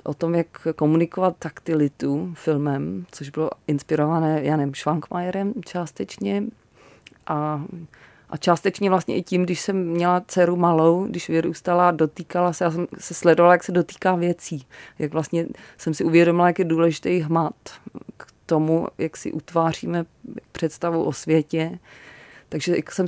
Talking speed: 145 wpm